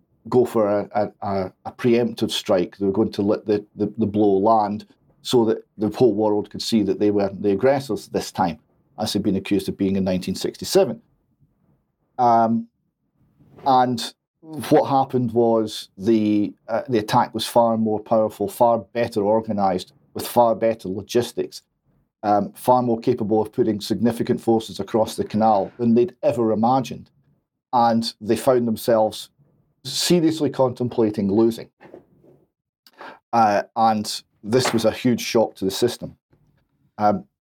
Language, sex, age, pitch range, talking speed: English, male, 40-59, 105-125 Hz, 150 wpm